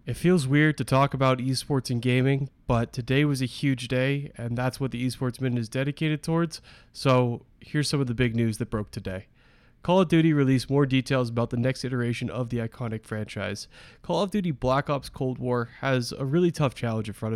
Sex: male